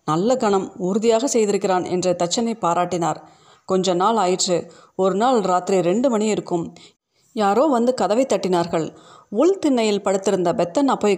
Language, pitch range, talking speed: Tamil, 175-225 Hz, 125 wpm